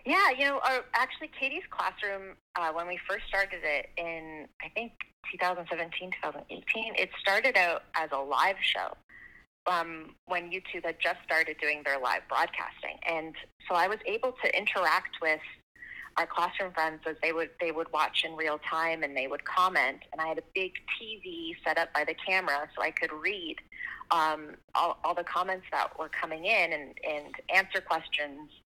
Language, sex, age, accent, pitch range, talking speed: English, female, 30-49, American, 155-190 Hz, 180 wpm